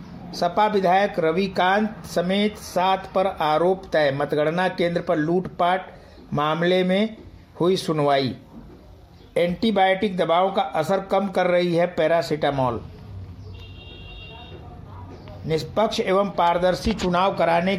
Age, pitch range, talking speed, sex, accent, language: 60-79, 145-190 Hz, 105 wpm, male, native, Hindi